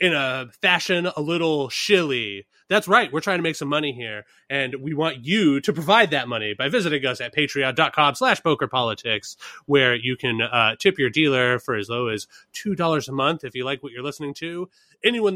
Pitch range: 130-165 Hz